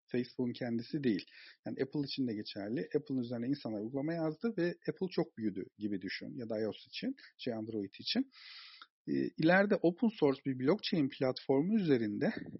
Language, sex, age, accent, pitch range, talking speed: Turkish, male, 50-69, native, 130-170 Hz, 155 wpm